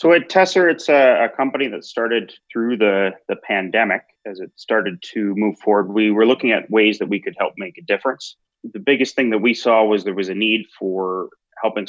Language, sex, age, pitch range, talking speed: English, male, 30-49, 95-115 Hz, 220 wpm